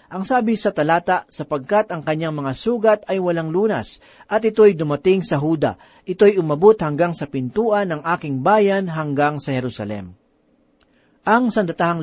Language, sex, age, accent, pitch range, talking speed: Filipino, male, 40-59, native, 145-195 Hz, 150 wpm